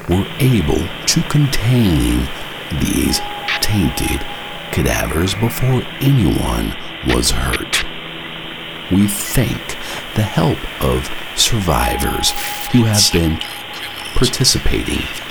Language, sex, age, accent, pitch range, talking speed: English, male, 60-79, American, 70-110 Hz, 80 wpm